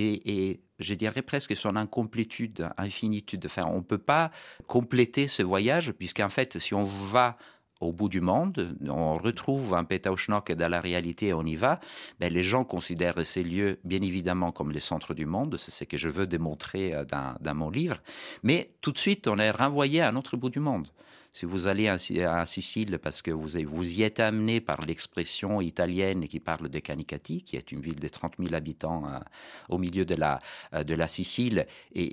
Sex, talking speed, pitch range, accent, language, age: male, 200 wpm, 80-105 Hz, French, French, 50-69